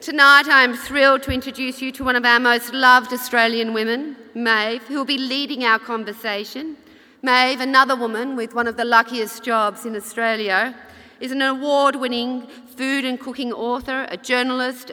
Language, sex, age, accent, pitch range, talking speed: English, female, 40-59, Australian, 225-255 Hz, 170 wpm